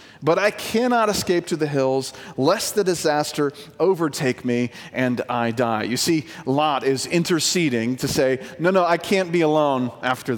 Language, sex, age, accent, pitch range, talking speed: English, male, 40-59, American, 130-180 Hz, 170 wpm